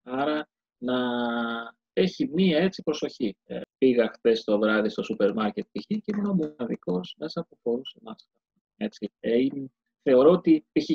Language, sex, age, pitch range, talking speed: Greek, male, 30-49, 120-185 Hz, 150 wpm